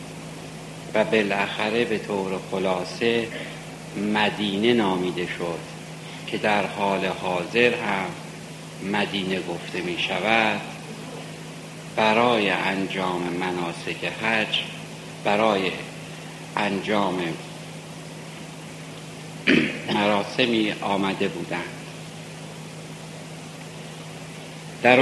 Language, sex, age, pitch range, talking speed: Persian, male, 60-79, 100-120 Hz, 65 wpm